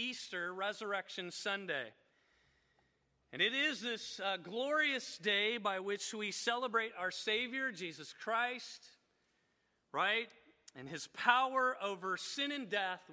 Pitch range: 175-230 Hz